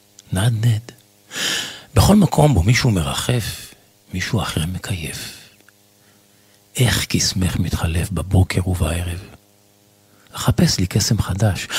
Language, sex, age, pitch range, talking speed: Hebrew, male, 50-69, 90-100 Hz, 95 wpm